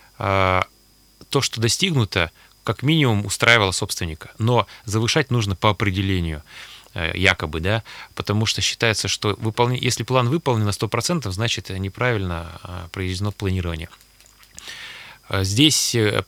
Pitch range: 100-125 Hz